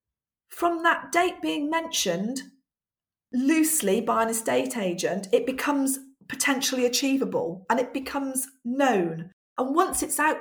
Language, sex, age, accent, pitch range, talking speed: English, female, 40-59, British, 200-285 Hz, 125 wpm